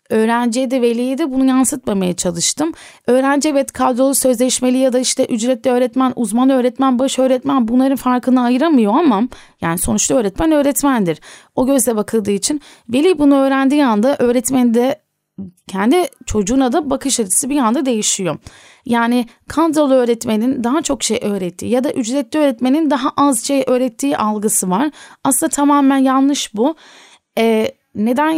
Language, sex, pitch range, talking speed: Turkish, female, 230-275 Hz, 145 wpm